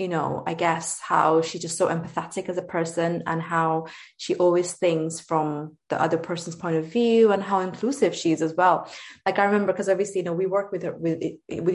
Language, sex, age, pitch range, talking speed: English, female, 20-39, 165-200 Hz, 220 wpm